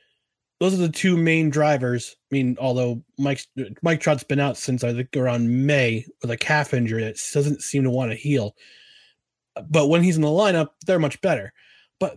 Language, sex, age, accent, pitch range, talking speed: English, male, 20-39, American, 125-175 Hz, 195 wpm